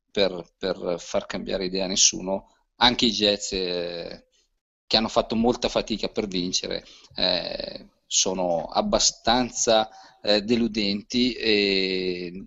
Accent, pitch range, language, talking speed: native, 95-115 Hz, Italian, 110 wpm